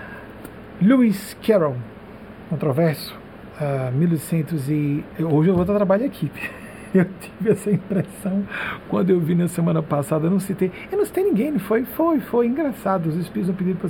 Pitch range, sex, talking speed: 155-200 Hz, male, 170 wpm